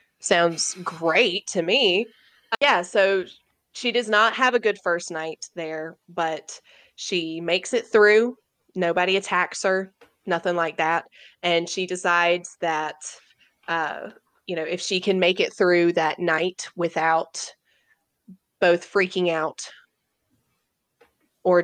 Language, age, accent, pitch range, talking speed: English, 20-39, American, 170-200 Hz, 130 wpm